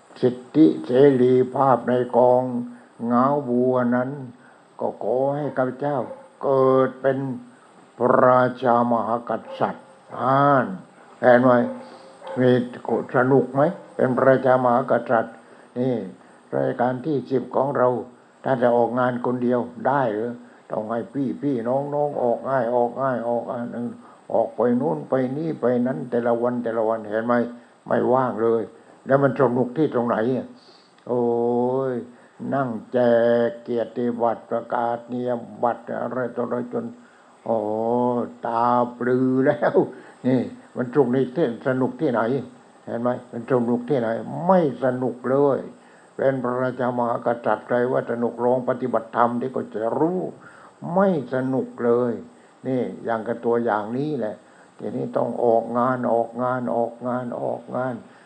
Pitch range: 120-130 Hz